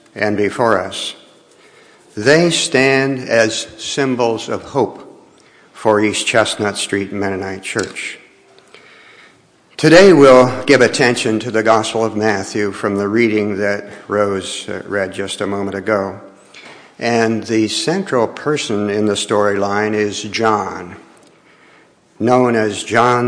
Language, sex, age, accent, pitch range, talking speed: English, male, 60-79, American, 105-135 Hz, 120 wpm